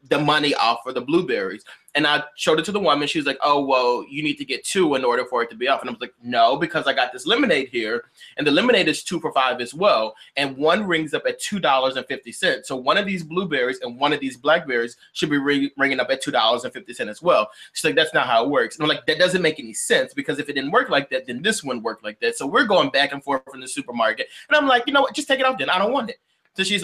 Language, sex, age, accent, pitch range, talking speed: English, male, 20-39, American, 135-190 Hz, 285 wpm